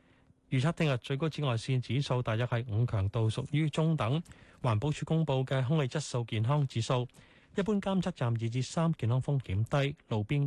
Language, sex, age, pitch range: Chinese, male, 20-39, 110-150 Hz